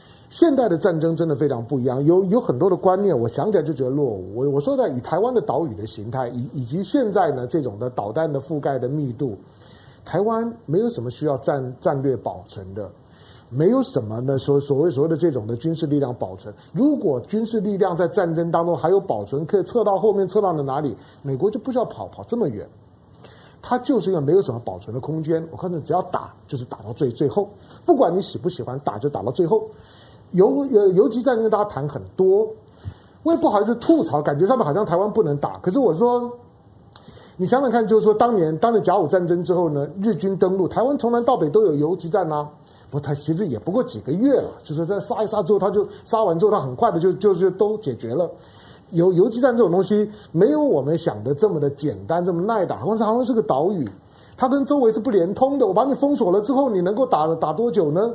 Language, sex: Chinese, male